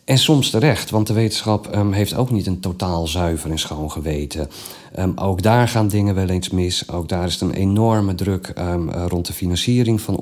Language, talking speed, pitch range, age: Dutch, 210 wpm, 90-110 Hz, 40-59